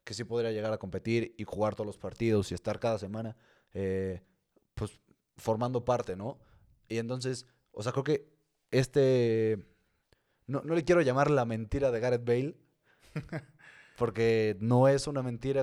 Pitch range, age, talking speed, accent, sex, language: 110-130 Hz, 20-39, 160 wpm, Mexican, male, Spanish